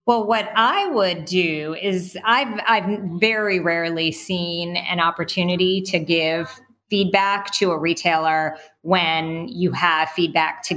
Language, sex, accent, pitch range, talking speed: English, female, American, 170-200 Hz, 135 wpm